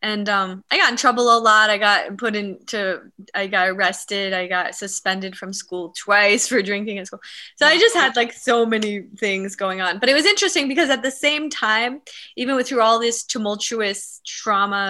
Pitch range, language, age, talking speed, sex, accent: 190-235 Hz, English, 20-39, 200 wpm, female, American